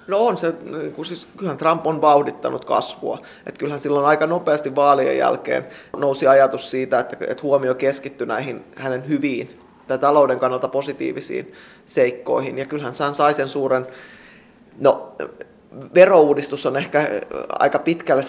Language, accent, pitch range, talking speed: Finnish, native, 130-145 Hz, 145 wpm